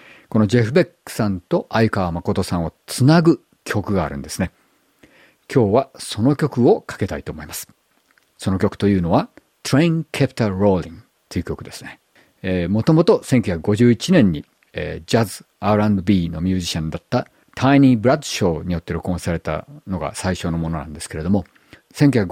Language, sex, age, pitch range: Japanese, male, 50-69, 90-135 Hz